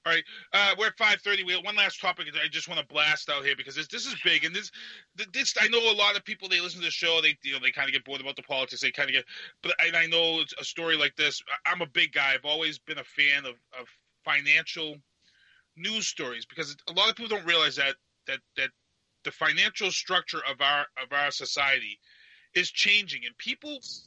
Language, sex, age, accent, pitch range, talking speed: English, male, 30-49, American, 140-200 Hz, 245 wpm